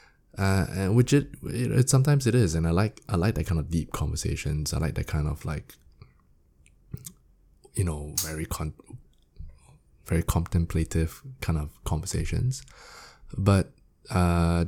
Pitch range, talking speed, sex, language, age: 75-90 Hz, 145 wpm, male, English, 20-39